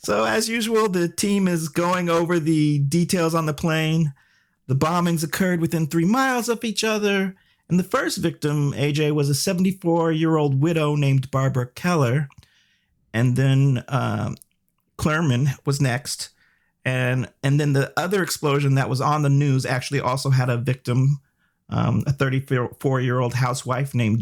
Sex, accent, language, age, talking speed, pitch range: male, American, English, 40-59, 160 wpm, 120-155 Hz